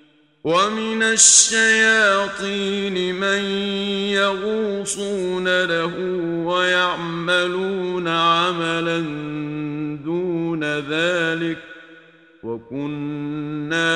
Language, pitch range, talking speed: Arabic, 150-190 Hz, 45 wpm